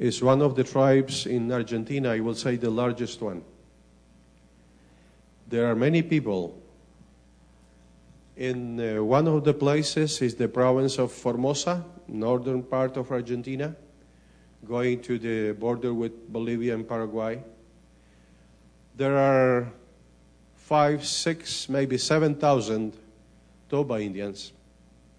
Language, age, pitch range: English, 50-69, 100-135 Hz